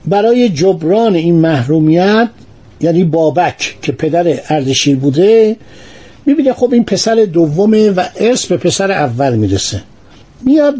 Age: 50-69